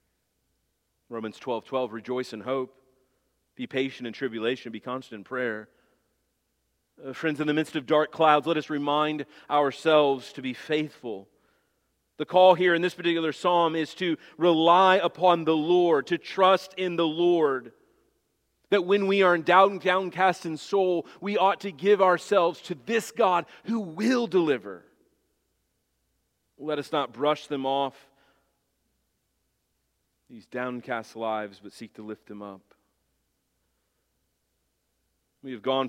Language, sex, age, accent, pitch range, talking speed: English, male, 40-59, American, 115-170 Hz, 145 wpm